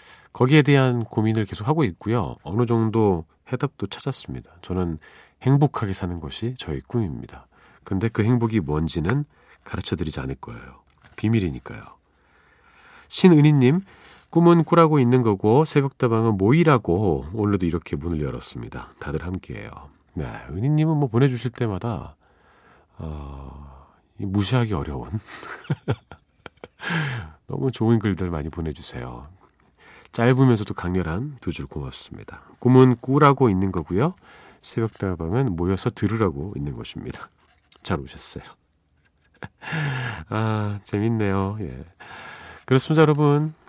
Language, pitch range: Korean, 85-130 Hz